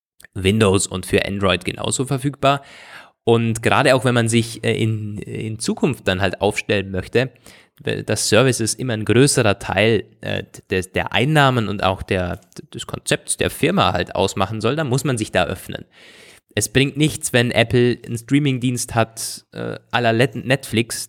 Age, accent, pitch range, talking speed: 20-39, German, 105-130 Hz, 155 wpm